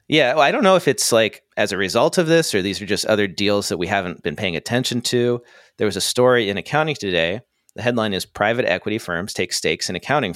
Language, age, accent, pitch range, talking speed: English, 40-59, American, 95-120 Hz, 245 wpm